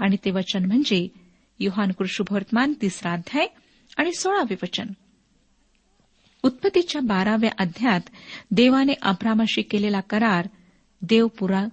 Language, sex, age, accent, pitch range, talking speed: Marathi, female, 50-69, native, 195-255 Hz, 85 wpm